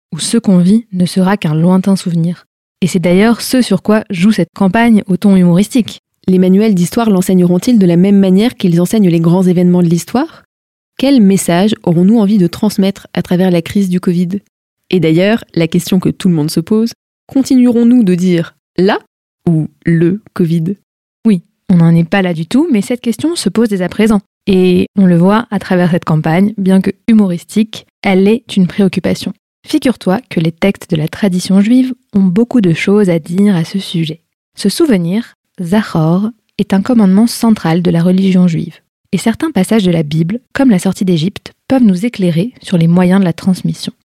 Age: 20-39